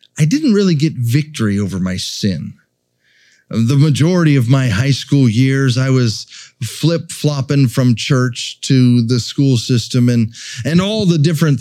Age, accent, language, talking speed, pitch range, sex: 30-49, American, English, 150 wpm, 110-140 Hz, male